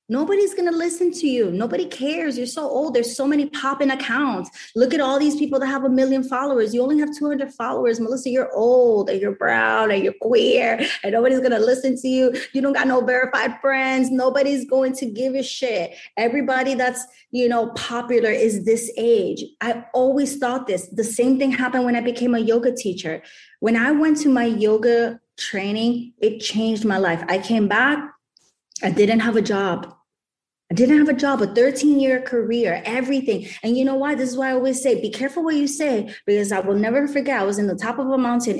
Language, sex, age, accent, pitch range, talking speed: English, female, 20-39, American, 205-265 Hz, 215 wpm